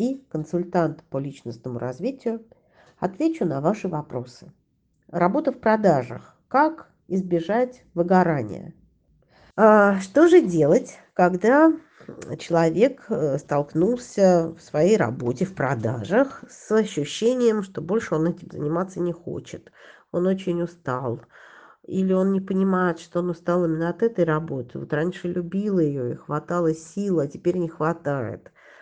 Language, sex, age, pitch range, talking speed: Russian, female, 40-59, 155-185 Hz, 125 wpm